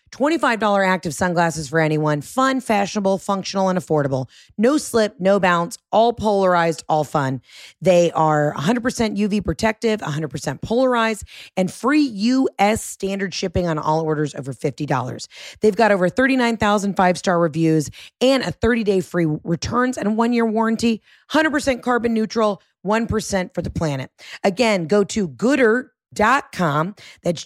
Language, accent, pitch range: English, American, 150-210 Hz